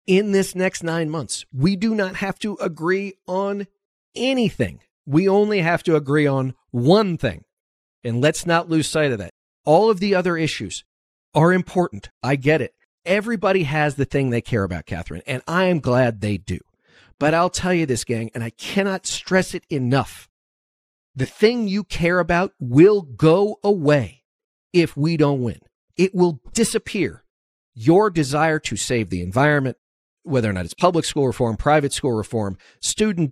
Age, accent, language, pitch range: 50-69, American, English, 125-185 Hz